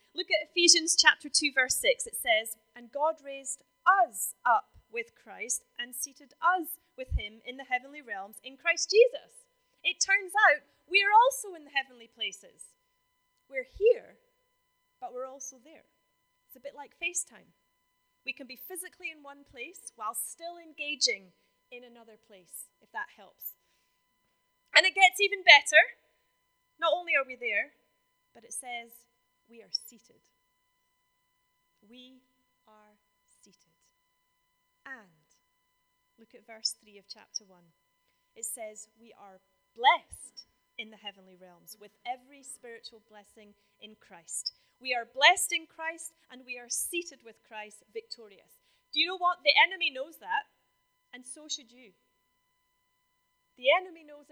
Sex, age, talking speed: female, 30-49, 150 wpm